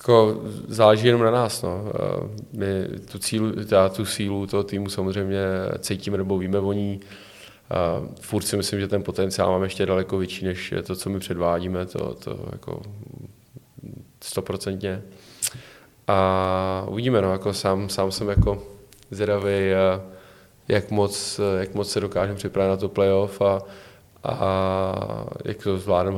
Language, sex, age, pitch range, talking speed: Czech, male, 20-39, 95-100 Hz, 135 wpm